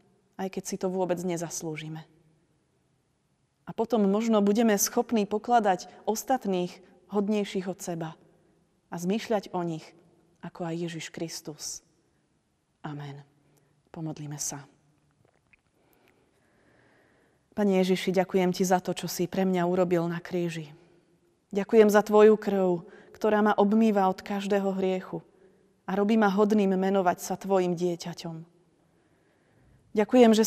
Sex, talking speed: female, 120 wpm